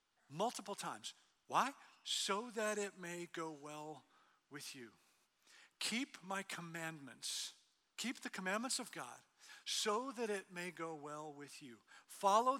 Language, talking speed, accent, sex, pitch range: English, 135 wpm, American, male, 175-235 Hz